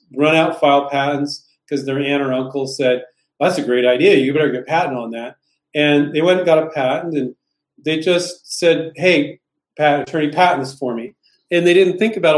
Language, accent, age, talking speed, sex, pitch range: English, American, 40-59, 210 wpm, male, 140-180 Hz